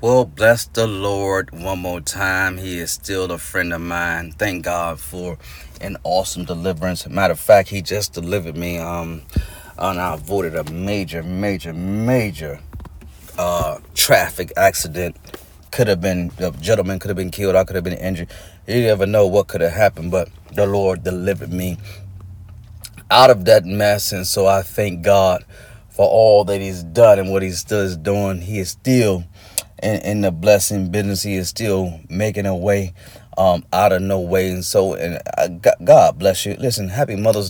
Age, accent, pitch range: 30-49, American, 90-100 Hz